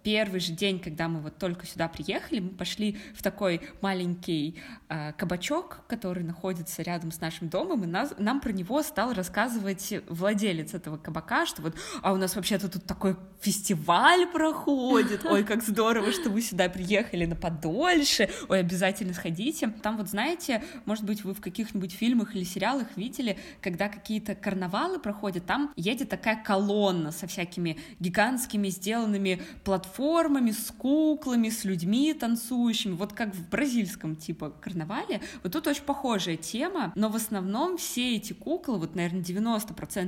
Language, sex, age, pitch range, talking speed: Russian, female, 20-39, 185-240 Hz, 155 wpm